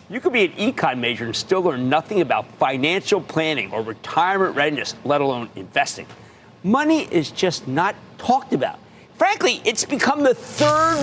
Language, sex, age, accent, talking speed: English, male, 50-69, American, 165 wpm